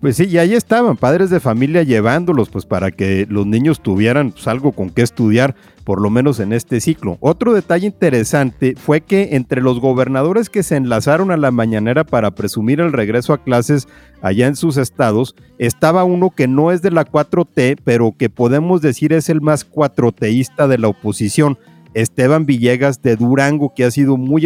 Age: 50-69